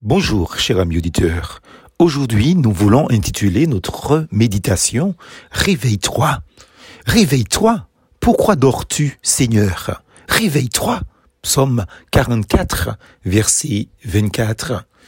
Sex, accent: male, French